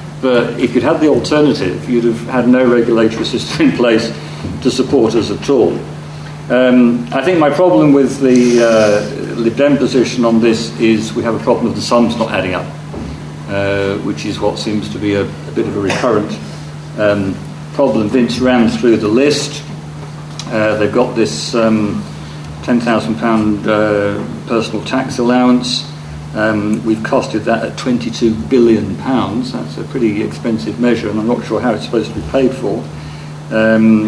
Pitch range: 110-130 Hz